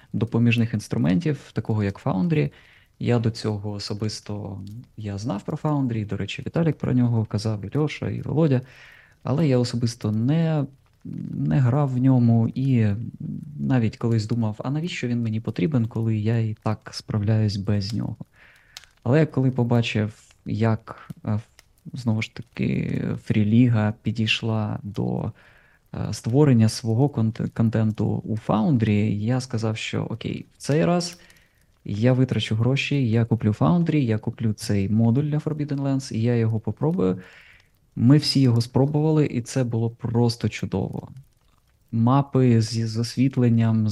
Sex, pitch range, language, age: male, 110-130 Hz, Ukrainian, 20-39